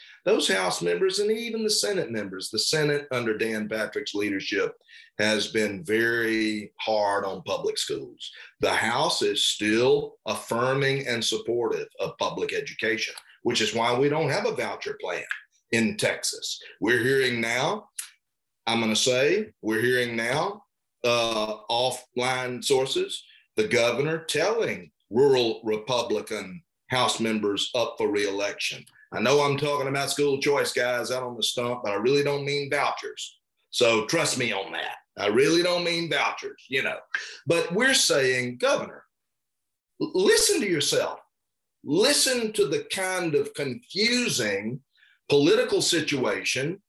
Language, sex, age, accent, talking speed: English, male, 40-59, American, 140 wpm